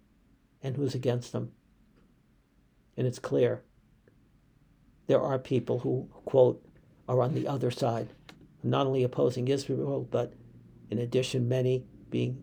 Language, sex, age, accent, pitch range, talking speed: English, male, 60-79, American, 120-140 Hz, 125 wpm